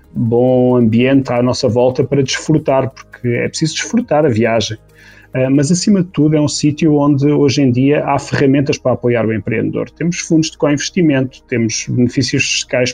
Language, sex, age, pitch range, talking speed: Portuguese, male, 30-49, 125-150 Hz, 170 wpm